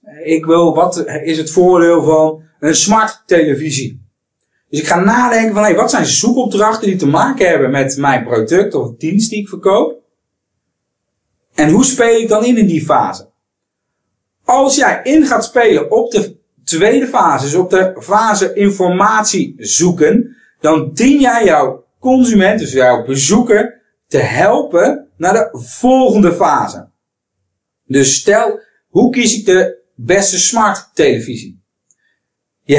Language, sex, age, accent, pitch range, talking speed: Dutch, male, 40-59, Dutch, 140-215 Hz, 145 wpm